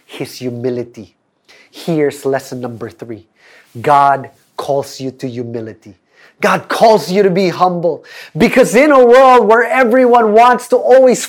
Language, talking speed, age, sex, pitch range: English, 140 wpm, 30-49, male, 150-240 Hz